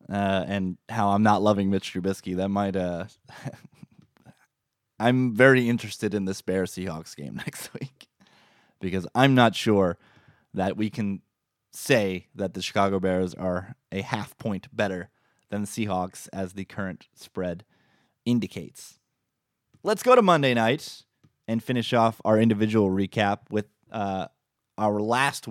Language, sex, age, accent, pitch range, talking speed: English, male, 20-39, American, 100-120 Hz, 145 wpm